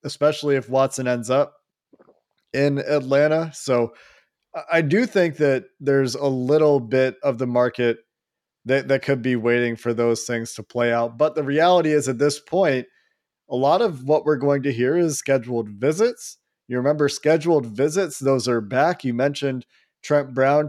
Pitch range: 125-150 Hz